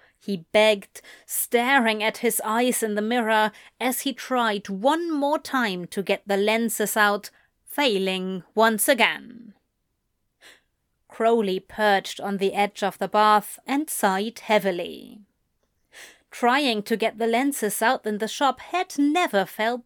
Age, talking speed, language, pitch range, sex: 30-49, 140 wpm, English, 205-265 Hz, female